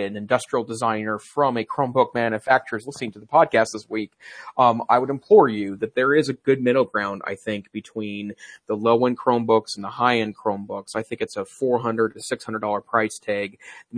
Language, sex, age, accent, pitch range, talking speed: English, male, 30-49, American, 105-120 Hz, 195 wpm